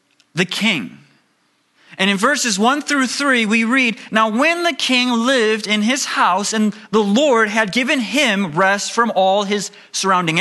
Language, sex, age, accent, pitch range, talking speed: English, male, 30-49, American, 180-245 Hz, 165 wpm